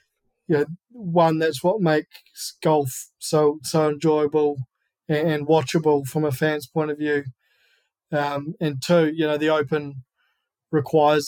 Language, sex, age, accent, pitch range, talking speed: English, male, 20-39, Australian, 150-165 Hz, 140 wpm